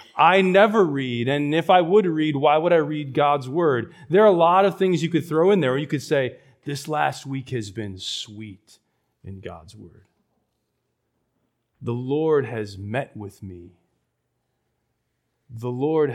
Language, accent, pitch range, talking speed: English, American, 115-150 Hz, 170 wpm